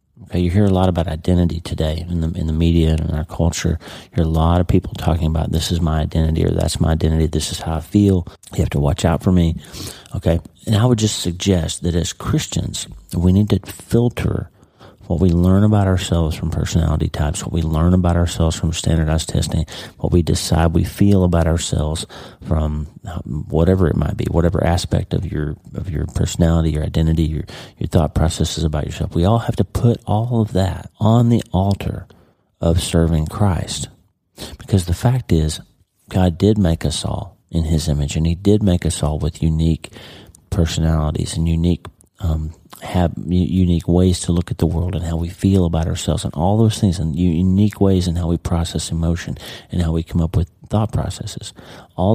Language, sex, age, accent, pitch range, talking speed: English, male, 40-59, American, 80-100 Hz, 200 wpm